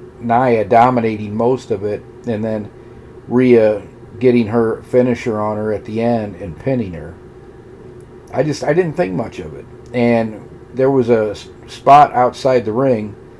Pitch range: 110-125 Hz